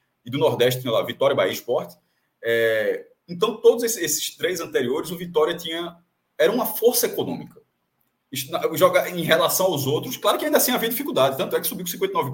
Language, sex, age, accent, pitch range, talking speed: Portuguese, male, 20-39, Brazilian, 155-245 Hz, 205 wpm